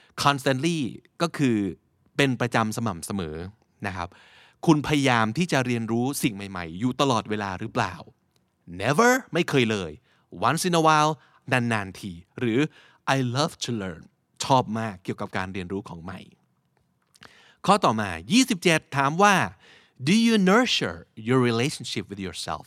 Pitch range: 105-145 Hz